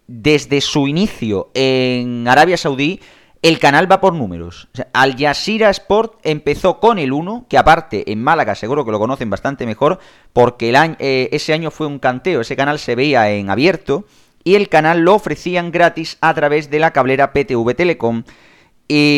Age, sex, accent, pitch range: 30-49, male, Spanish, 120-165 Hz